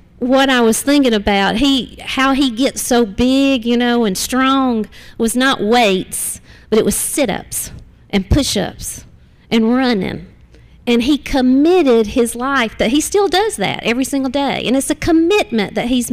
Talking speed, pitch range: 165 wpm, 215-270 Hz